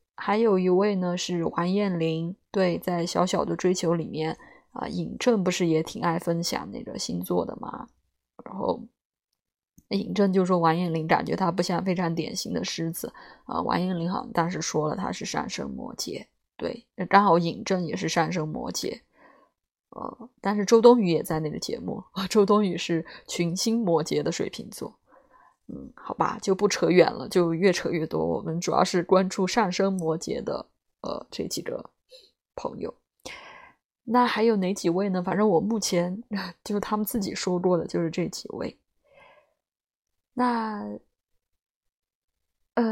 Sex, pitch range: female, 170-220 Hz